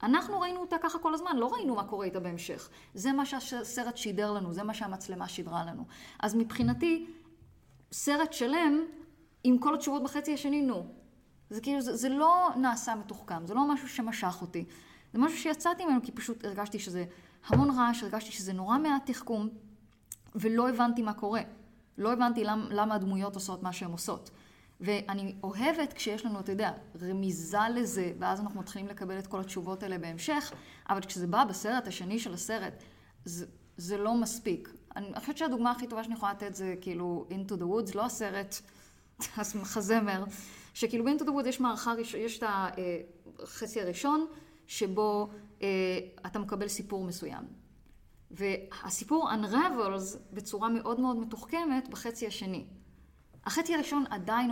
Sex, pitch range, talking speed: female, 195-245 Hz, 160 wpm